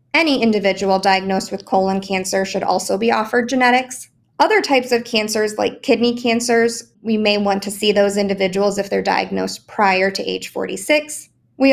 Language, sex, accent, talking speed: English, female, American, 170 wpm